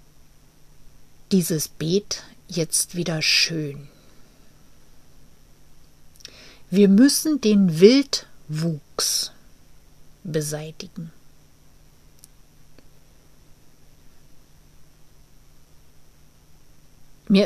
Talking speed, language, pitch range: 40 wpm, German, 150-205 Hz